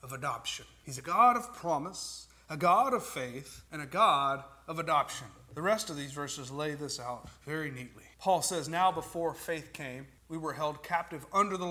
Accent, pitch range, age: American, 145-185 Hz, 40-59